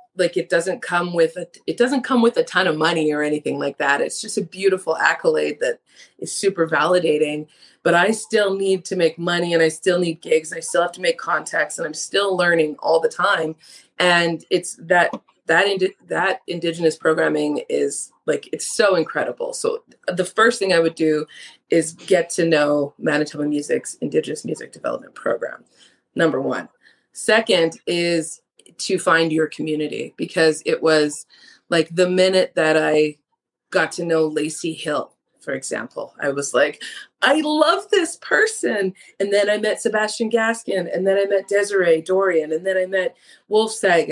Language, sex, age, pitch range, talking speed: English, female, 20-39, 165-215 Hz, 175 wpm